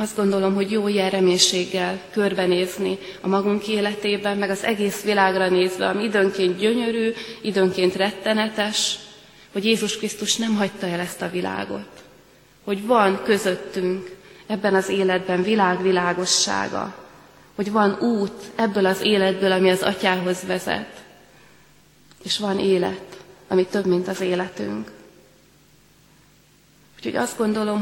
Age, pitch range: 20-39, 185-210 Hz